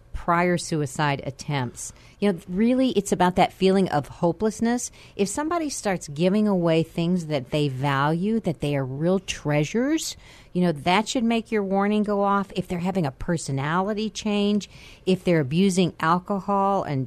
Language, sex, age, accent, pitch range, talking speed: English, female, 50-69, American, 155-200 Hz, 160 wpm